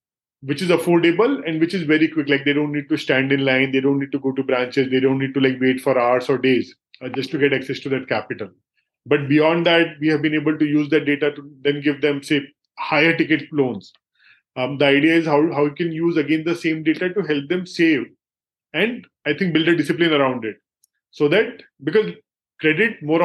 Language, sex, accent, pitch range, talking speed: English, male, Indian, 140-165 Hz, 230 wpm